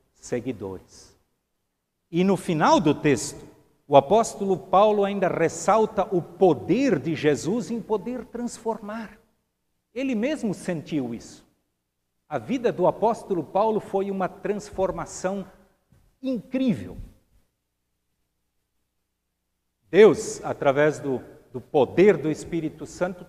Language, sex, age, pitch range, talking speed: Portuguese, male, 60-79, 130-195 Hz, 100 wpm